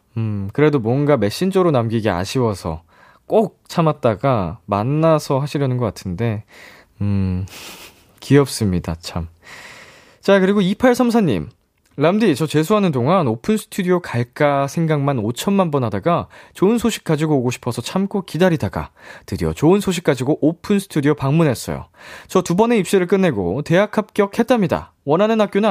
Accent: native